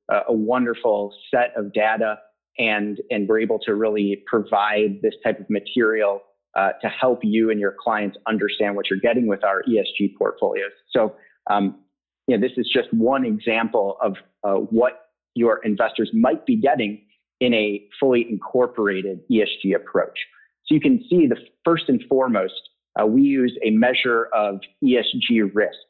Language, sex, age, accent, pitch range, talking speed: English, male, 30-49, American, 105-140 Hz, 160 wpm